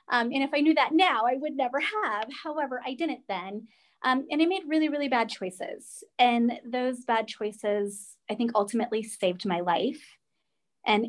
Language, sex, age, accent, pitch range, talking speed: English, female, 30-49, American, 195-245 Hz, 185 wpm